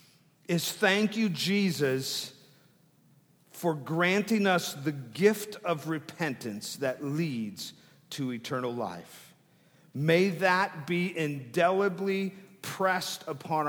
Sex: male